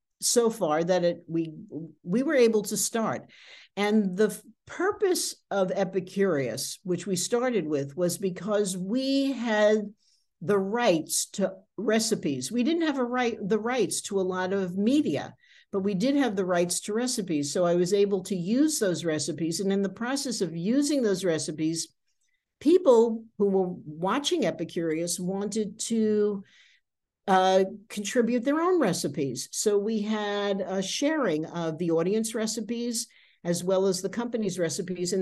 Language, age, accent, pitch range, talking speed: English, 60-79, American, 180-230 Hz, 155 wpm